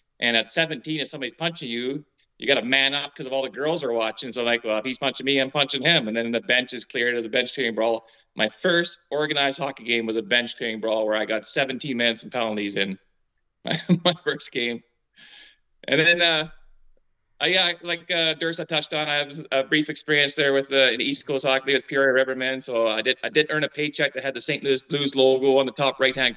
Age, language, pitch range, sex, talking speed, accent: 30-49, English, 120-150 Hz, male, 245 wpm, American